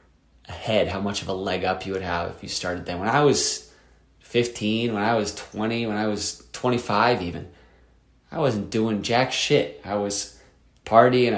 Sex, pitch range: male, 90-115 Hz